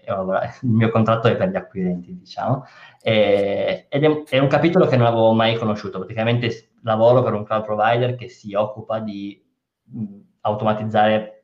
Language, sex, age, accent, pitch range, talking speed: Italian, male, 20-39, native, 95-115 Hz, 145 wpm